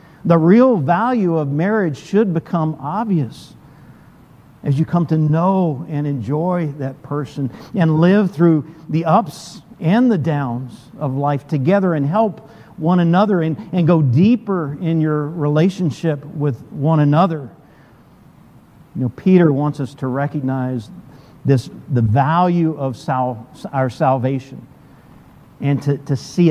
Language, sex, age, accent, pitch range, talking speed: English, male, 50-69, American, 130-165 Hz, 135 wpm